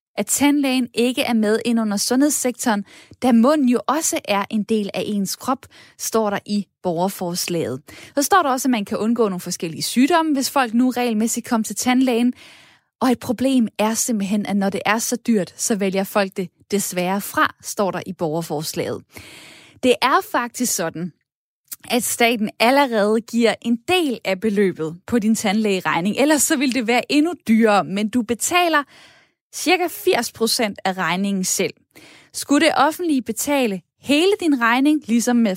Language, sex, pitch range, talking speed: Danish, female, 205-270 Hz, 170 wpm